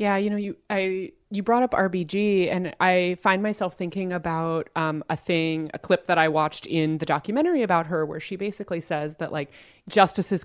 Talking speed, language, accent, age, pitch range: 200 wpm, English, American, 30-49, 155-190 Hz